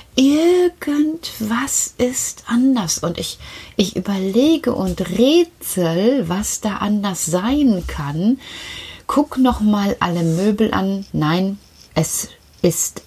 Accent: German